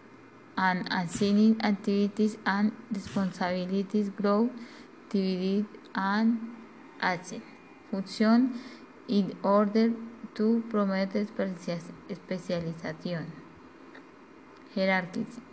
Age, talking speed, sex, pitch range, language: 20-39, 60 wpm, female, 195-240 Hz, Spanish